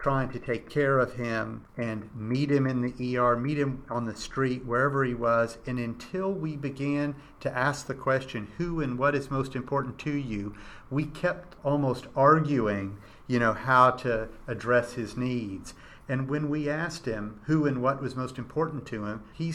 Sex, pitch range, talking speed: male, 120-145 Hz, 185 wpm